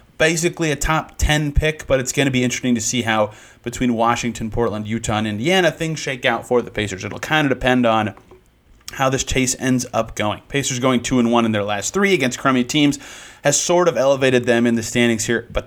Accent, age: American, 30-49